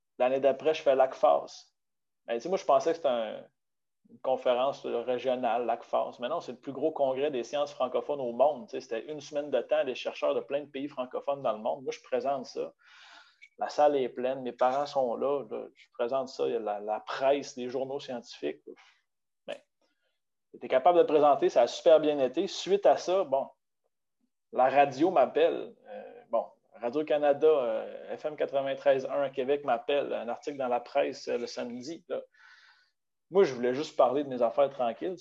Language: French